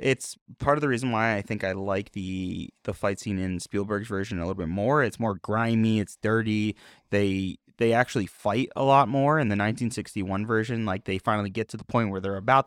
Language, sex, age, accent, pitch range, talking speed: English, male, 20-39, American, 100-120 Hz, 225 wpm